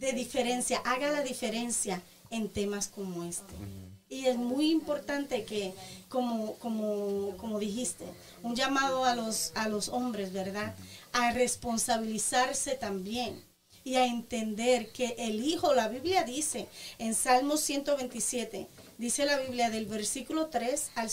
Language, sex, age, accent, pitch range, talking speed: Spanish, female, 30-49, American, 220-290 Hz, 135 wpm